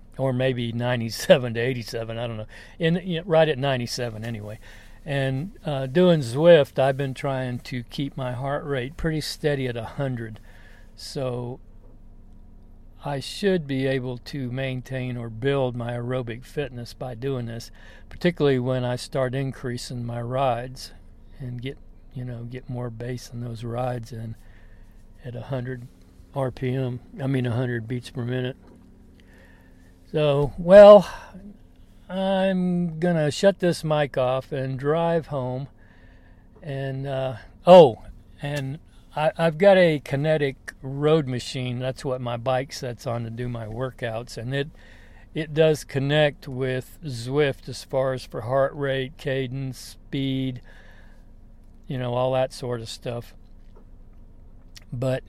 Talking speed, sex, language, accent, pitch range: 140 wpm, male, English, American, 115-140 Hz